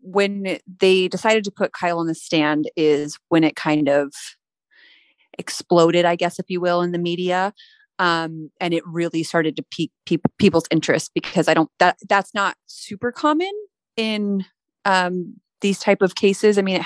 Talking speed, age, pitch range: 175 wpm, 30-49, 160-195 Hz